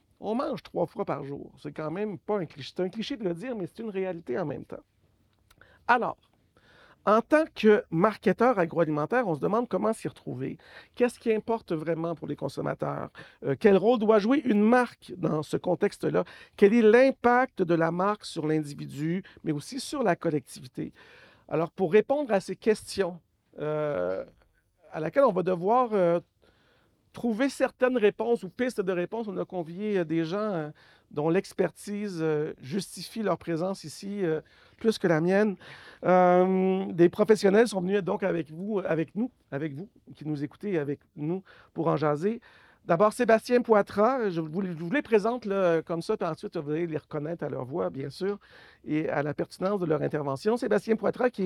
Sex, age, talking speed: male, 50-69, 185 wpm